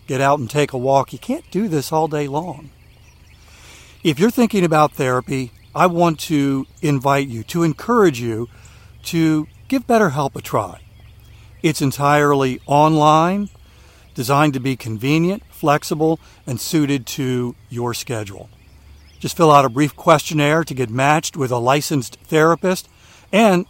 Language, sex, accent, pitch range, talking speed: English, male, American, 120-160 Hz, 150 wpm